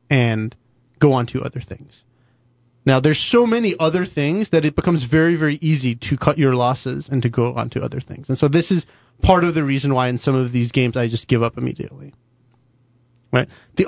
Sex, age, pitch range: male, 30-49, 125-160 Hz